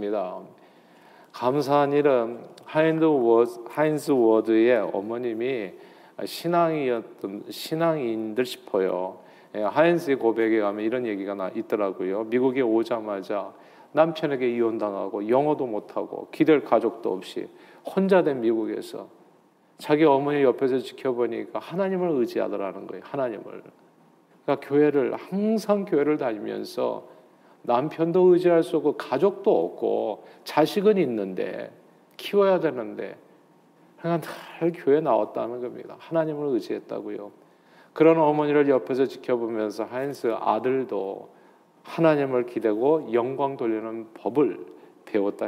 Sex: male